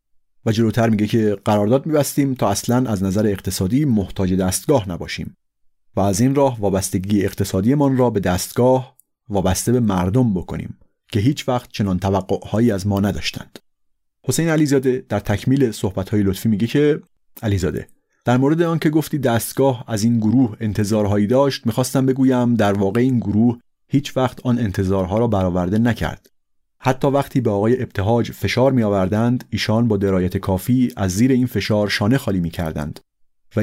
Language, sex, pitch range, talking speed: Persian, male, 100-125 Hz, 160 wpm